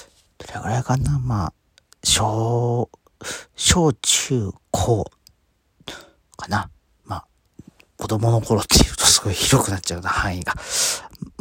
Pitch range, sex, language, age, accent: 95-130 Hz, male, Japanese, 40-59, native